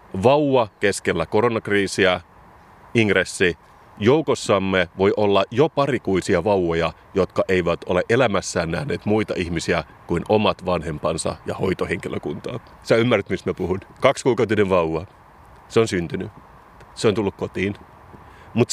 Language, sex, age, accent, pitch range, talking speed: Finnish, male, 30-49, native, 95-115 Hz, 120 wpm